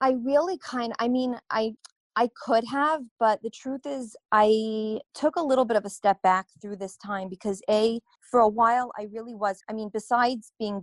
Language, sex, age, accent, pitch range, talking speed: English, female, 30-49, American, 185-220 Hz, 210 wpm